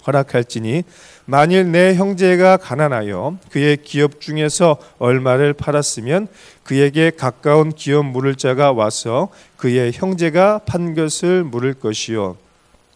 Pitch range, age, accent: 140-190 Hz, 40-59, native